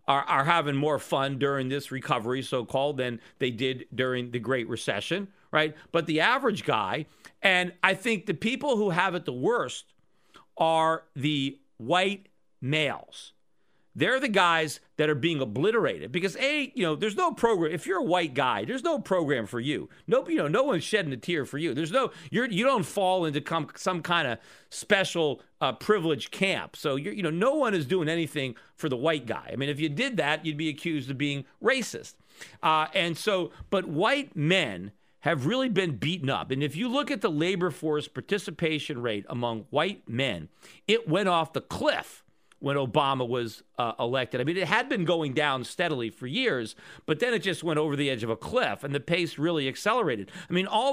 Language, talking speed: English, 200 wpm